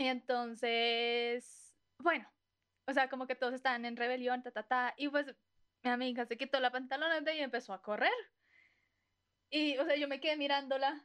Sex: female